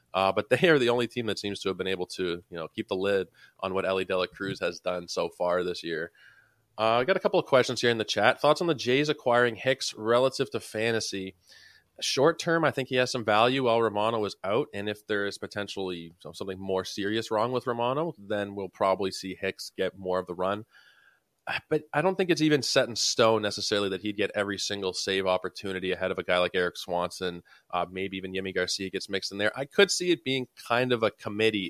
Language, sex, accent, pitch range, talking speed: English, male, American, 95-120 Hz, 235 wpm